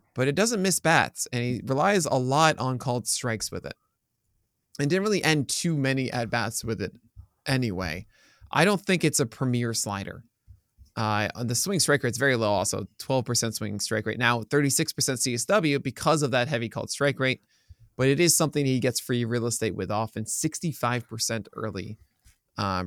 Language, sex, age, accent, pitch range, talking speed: English, male, 20-39, American, 110-145 Hz, 185 wpm